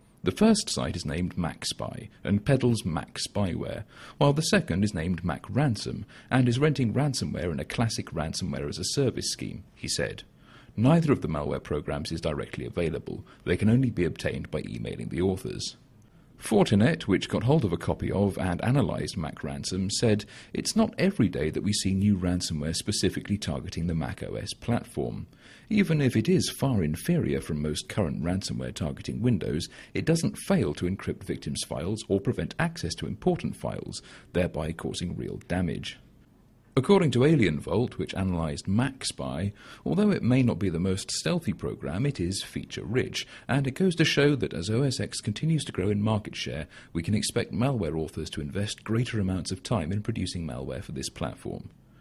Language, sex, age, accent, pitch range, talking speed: English, male, 40-59, British, 85-125 Hz, 170 wpm